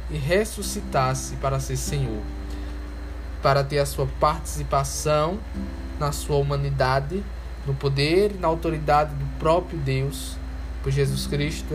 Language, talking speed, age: Portuguese, 125 wpm, 10-29